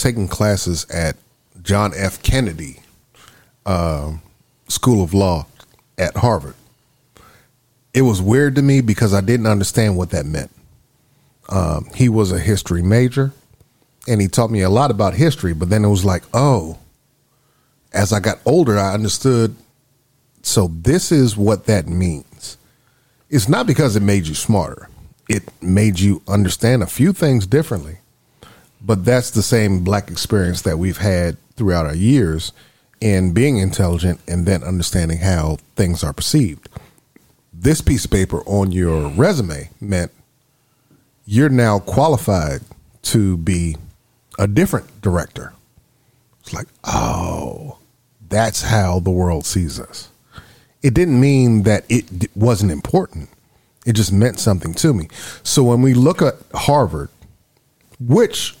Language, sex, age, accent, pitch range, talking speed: English, male, 40-59, American, 90-125 Hz, 140 wpm